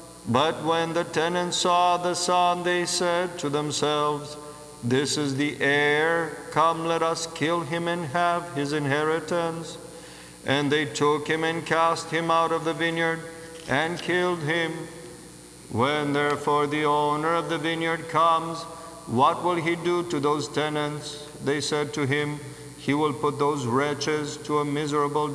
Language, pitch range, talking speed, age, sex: English, 150-175 Hz, 155 wpm, 50-69, male